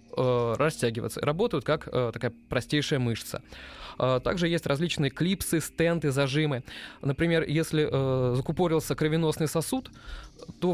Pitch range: 125-160 Hz